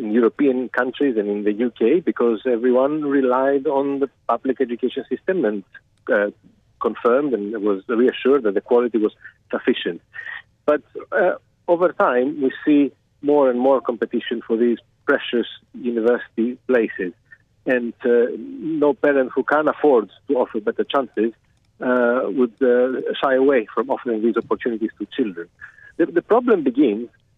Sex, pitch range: male, 115-140 Hz